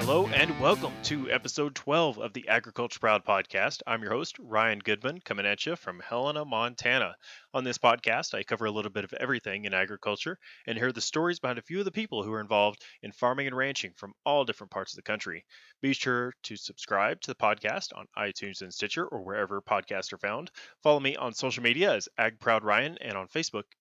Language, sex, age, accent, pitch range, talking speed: English, male, 30-49, American, 105-130 Hz, 215 wpm